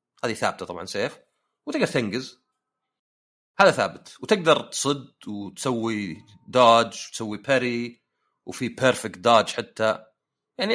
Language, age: Arabic, 40-59